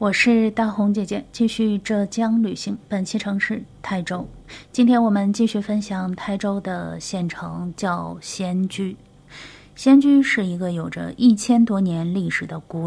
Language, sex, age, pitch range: Chinese, female, 30-49, 170-220 Hz